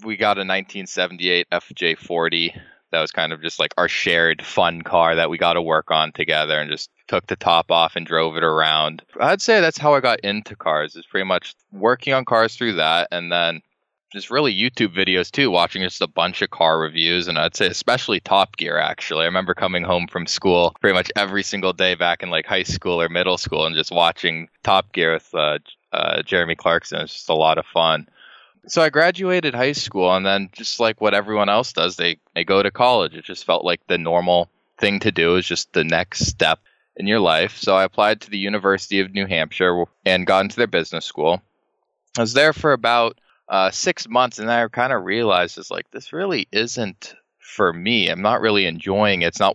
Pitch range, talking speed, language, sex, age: 85-105 Hz, 220 wpm, English, male, 20-39